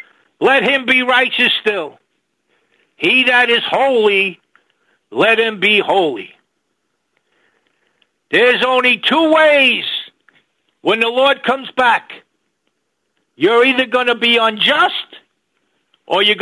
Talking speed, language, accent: 110 wpm, English, American